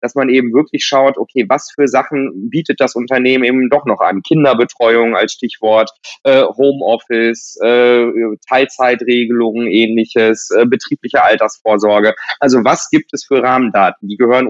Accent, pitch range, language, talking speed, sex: German, 120-140 Hz, German, 145 wpm, male